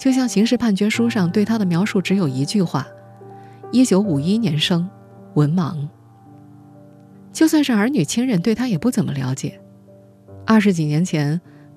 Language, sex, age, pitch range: Chinese, female, 20-39, 145-205 Hz